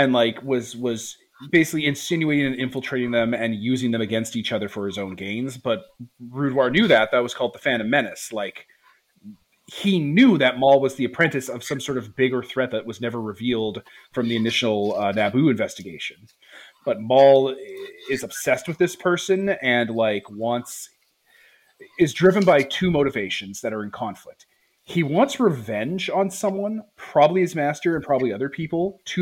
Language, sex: English, male